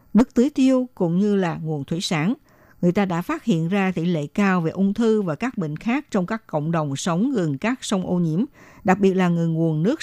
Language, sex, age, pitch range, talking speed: Vietnamese, female, 60-79, 170-225 Hz, 245 wpm